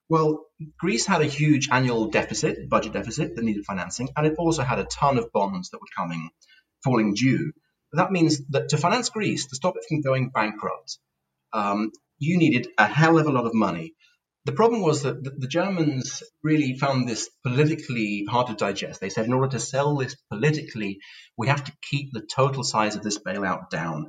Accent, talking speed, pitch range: British, 195 wpm, 105-150 Hz